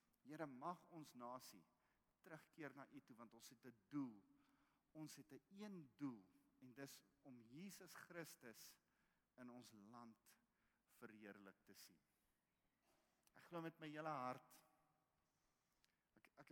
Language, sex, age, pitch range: English, male, 50-69, 120-150 Hz